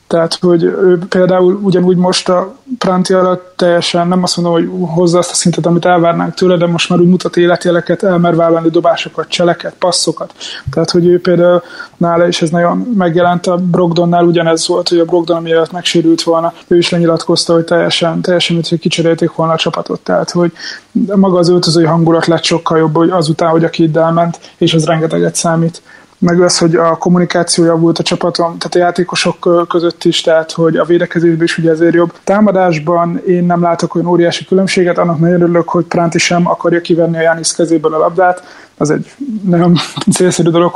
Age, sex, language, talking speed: 20-39, male, Hungarian, 185 wpm